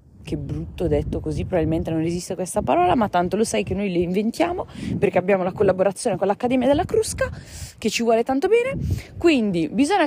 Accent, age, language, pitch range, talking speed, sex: native, 20-39, Italian, 175-230 Hz, 195 wpm, female